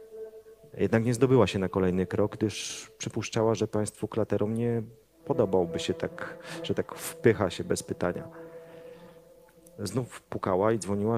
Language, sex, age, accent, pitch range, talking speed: Polish, male, 40-59, native, 95-120 Hz, 140 wpm